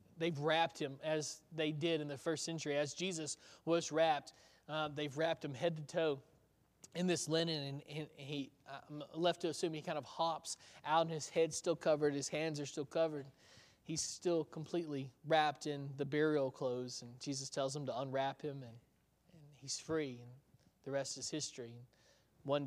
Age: 20-39